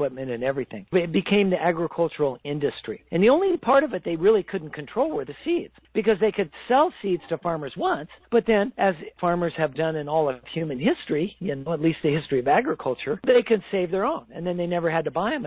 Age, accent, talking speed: 50-69, American, 225 wpm